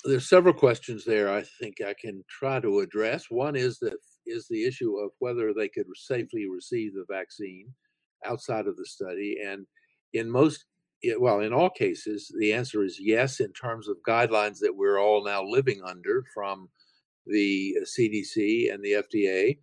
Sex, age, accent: male, 50-69, American